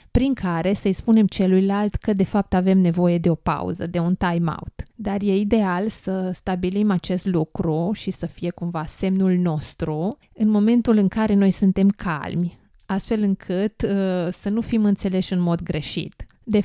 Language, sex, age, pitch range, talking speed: Romanian, female, 20-39, 180-205 Hz, 165 wpm